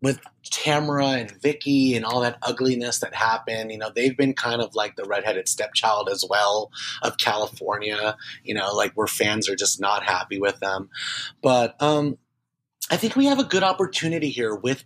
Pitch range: 115-155 Hz